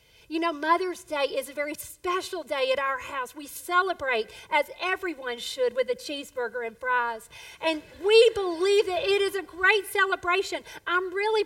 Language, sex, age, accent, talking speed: English, female, 40-59, American, 175 wpm